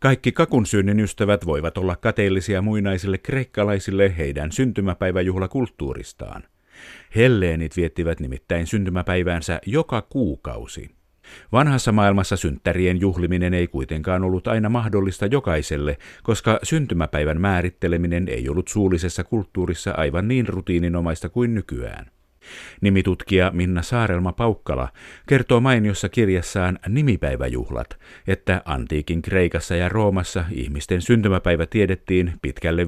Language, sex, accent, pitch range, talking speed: Finnish, male, native, 85-105 Hz, 100 wpm